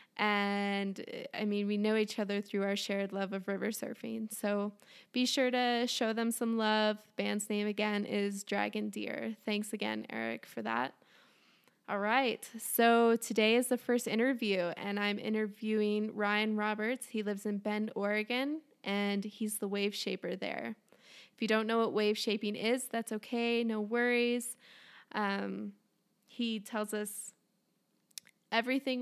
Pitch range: 205-230 Hz